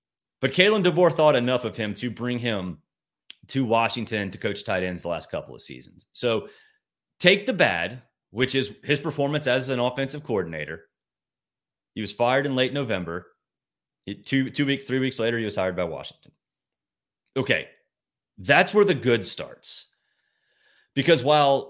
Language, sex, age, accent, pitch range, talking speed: English, male, 30-49, American, 115-145 Hz, 160 wpm